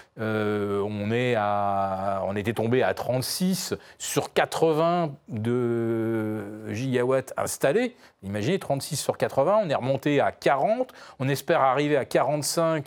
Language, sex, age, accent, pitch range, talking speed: French, male, 40-59, French, 110-160 Hz, 130 wpm